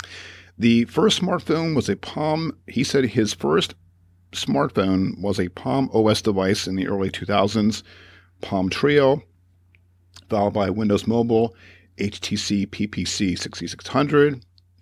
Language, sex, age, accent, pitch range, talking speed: English, male, 50-69, American, 90-120 Hz, 115 wpm